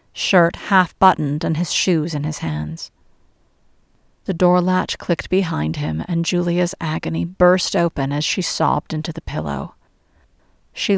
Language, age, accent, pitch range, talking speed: English, 50-69, American, 155-185 Hz, 140 wpm